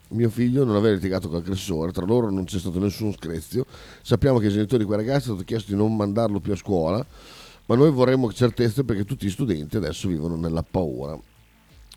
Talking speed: 210 wpm